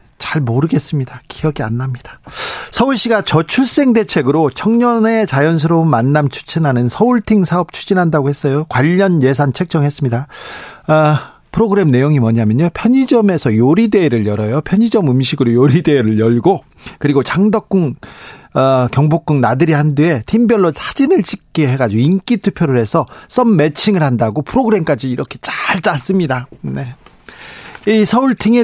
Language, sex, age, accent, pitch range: Korean, male, 40-59, native, 135-195 Hz